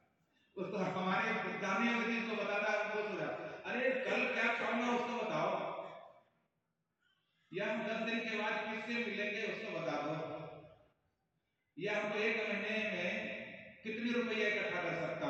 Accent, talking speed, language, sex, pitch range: native, 45 wpm, Hindi, male, 175-220 Hz